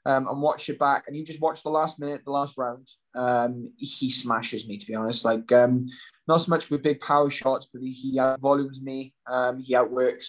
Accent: British